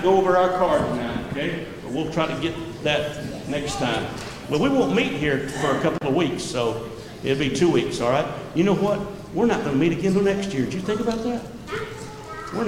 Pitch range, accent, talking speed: 135-185 Hz, American, 230 wpm